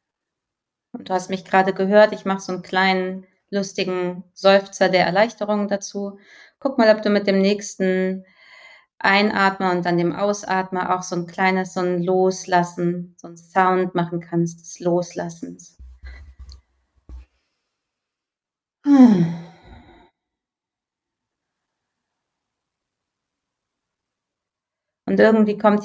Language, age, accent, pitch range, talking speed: German, 30-49, German, 175-195 Hz, 100 wpm